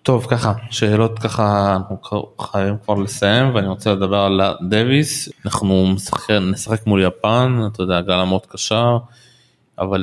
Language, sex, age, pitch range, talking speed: Hebrew, male, 20-39, 100-120 Hz, 145 wpm